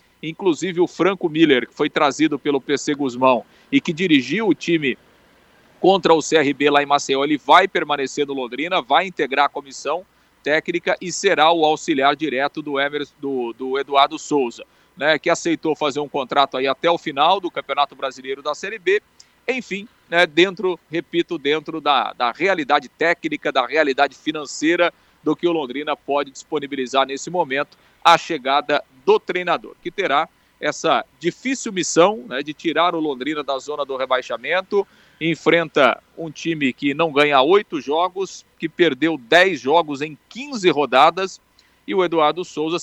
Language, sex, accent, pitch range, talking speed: Portuguese, male, Brazilian, 145-180 Hz, 155 wpm